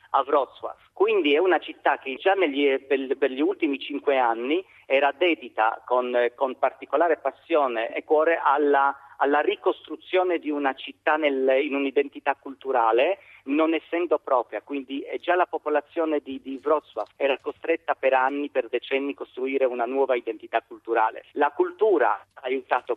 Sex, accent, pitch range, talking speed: male, native, 130-175 Hz, 140 wpm